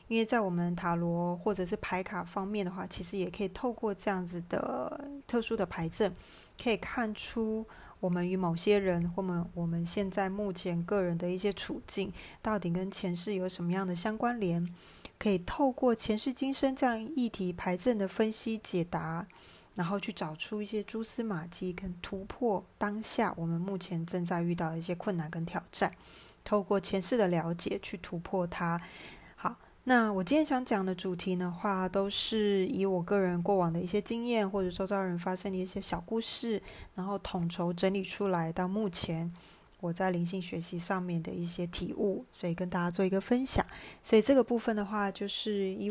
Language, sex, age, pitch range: Chinese, female, 20-39, 175-210 Hz